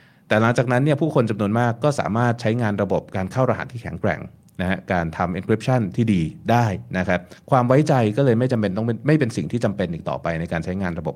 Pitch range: 95-125 Hz